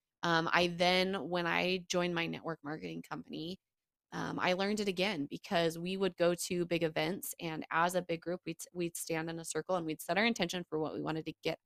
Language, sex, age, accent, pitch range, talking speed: English, female, 20-39, American, 160-195 Hz, 225 wpm